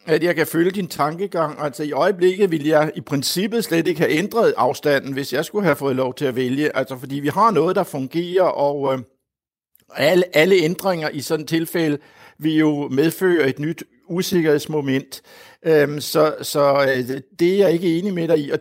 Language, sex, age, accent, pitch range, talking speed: Danish, male, 60-79, native, 145-175 Hz, 190 wpm